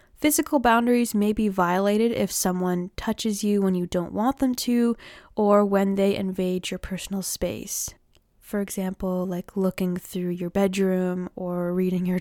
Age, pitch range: 20-39, 185-225 Hz